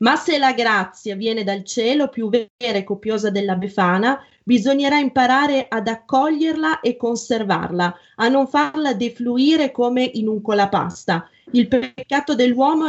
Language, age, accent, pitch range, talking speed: Italian, 30-49, native, 200-245 Hz, 140 wpm